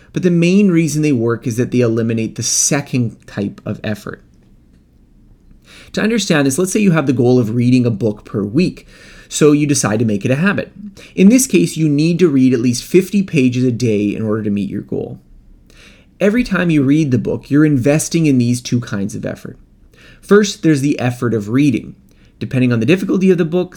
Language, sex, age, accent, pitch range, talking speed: English, male, 30-49, American, 110-155 Hz, 210 wpm